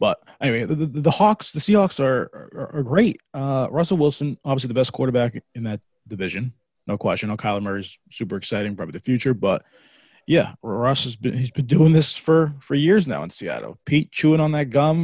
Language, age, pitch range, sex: English, 20-39, 120-150 Hz, male